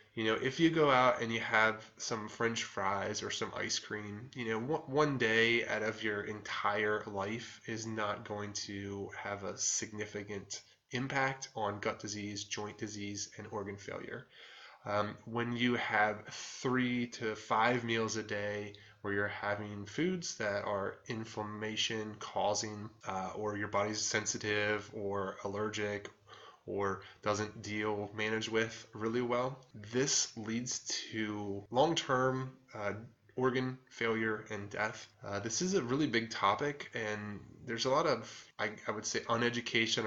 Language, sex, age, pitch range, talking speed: English, male, 20-39, 105-120 Hz, 145 wpm